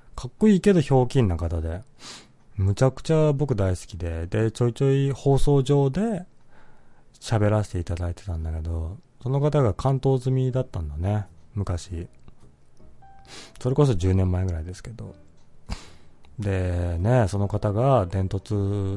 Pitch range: 95-130 Hz